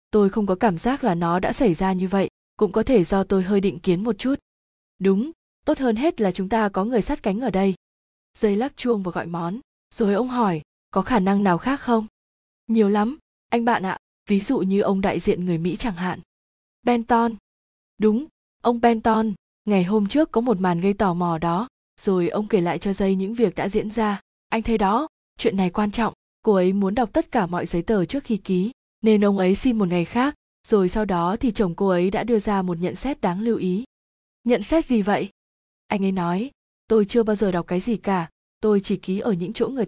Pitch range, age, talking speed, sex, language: 185-225 Hz, 20-39, 230 wpm, female, Vietnamese